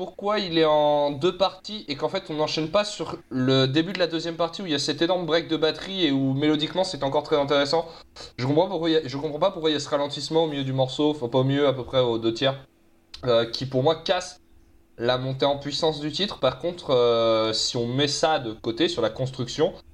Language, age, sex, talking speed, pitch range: French, 20-39, male, 255 wpm, 110-155 Hz